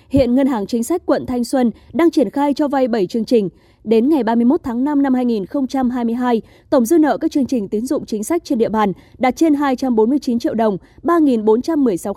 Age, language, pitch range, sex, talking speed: 20-39, Vietnamese, 230-290 Hz, female, 205 wpm